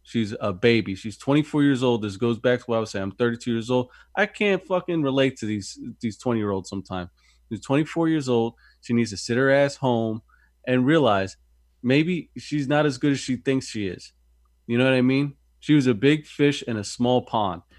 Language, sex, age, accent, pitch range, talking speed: English, male, 20-39, American, 105-135 Hz, 220 wpm